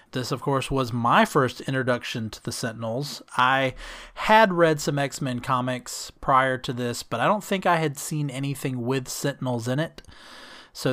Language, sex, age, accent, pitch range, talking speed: English, male, 30-49, American, 125-155 Hz, 175 wpm